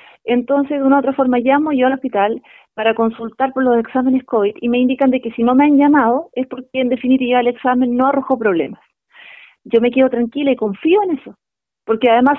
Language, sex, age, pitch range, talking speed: Spanish, female, 30-49, 230-275 Hz, 220 wpm